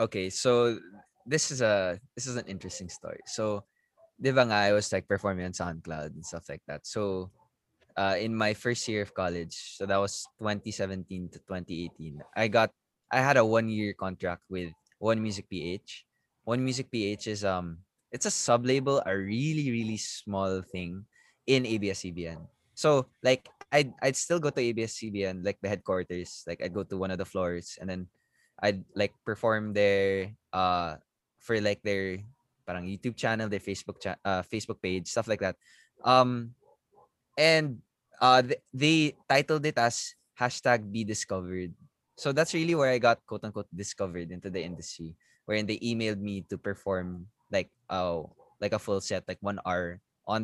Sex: male